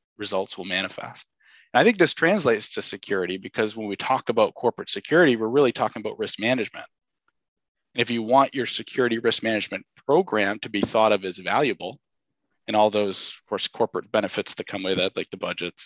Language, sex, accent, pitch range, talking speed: English, male, American, 105-130 Hz, 195 wpm